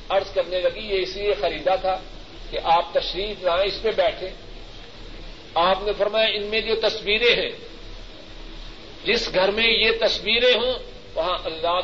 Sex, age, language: male, 50-69, Urdu